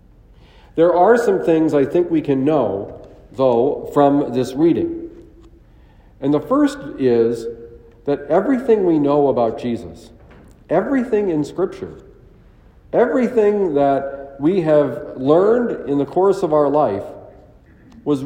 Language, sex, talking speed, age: English, male, 125 wpm, 50-69